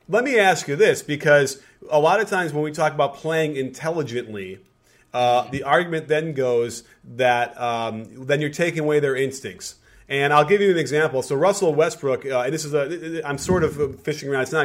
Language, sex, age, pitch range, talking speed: English, male, 30-49, 130-160 Hz, 205 wpm